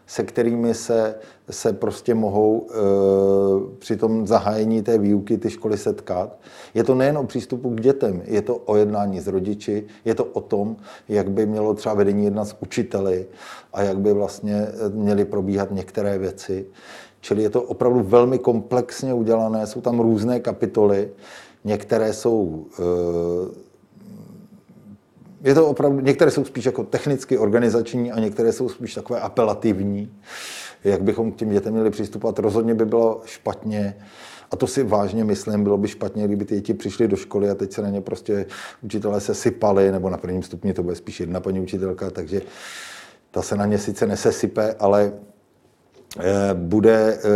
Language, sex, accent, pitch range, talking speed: Czech, male, native, 100-115 Hz, 165 wpm